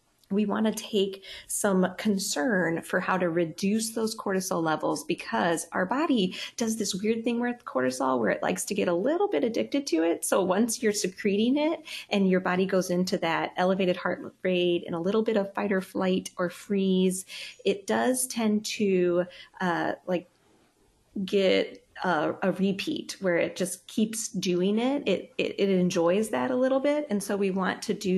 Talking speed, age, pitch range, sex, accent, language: 185 wpm, 30-49, 180-225 Hz, female, American, English